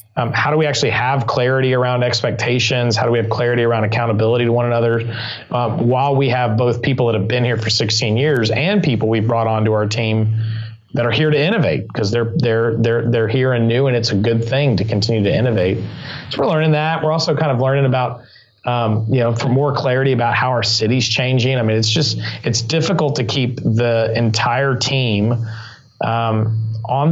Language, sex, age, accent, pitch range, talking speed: English, male, 30-49, American, 110-135 Hz, 210 wpm